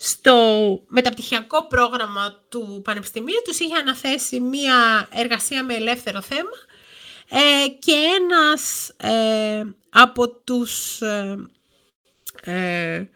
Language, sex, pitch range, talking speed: Greek, female, 225-290 Hz, 90 wpm